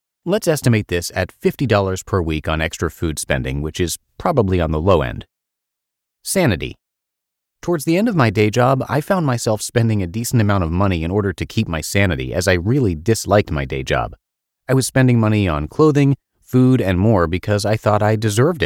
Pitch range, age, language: 90-130 Hz, 30-49, English